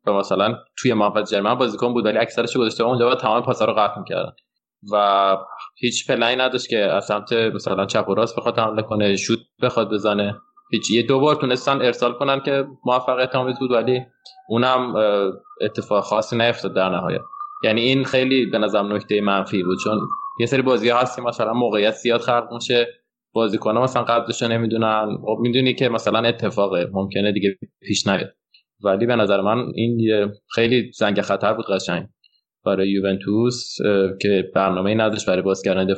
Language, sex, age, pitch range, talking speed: Persian, male, 20-39, 100-120 Hz, 165 wpm